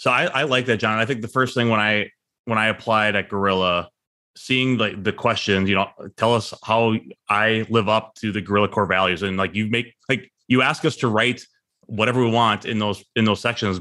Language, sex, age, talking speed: English, male, 30-49, 235 wpm